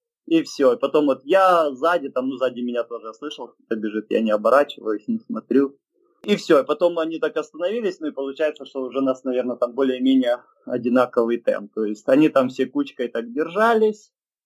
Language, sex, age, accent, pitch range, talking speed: Ukrainian, male, 20-39, native, 120-170 Hz, 195 wpm